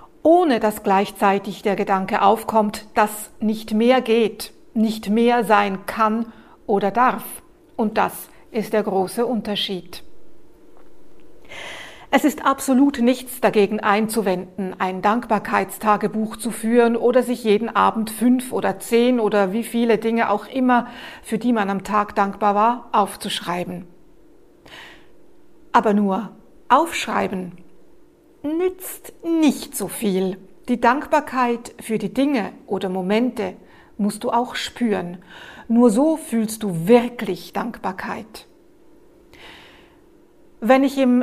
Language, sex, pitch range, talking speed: German, female, 205-270 Hz, 115 wpm